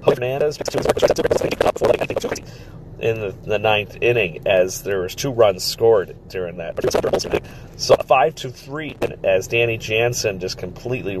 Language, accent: English, American